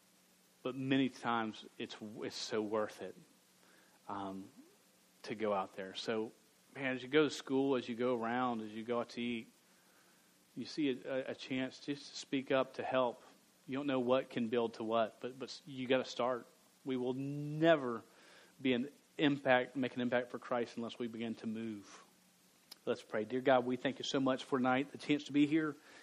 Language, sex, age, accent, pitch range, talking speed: English, male, 40-59, American, 120-135 Hz, 200 wpm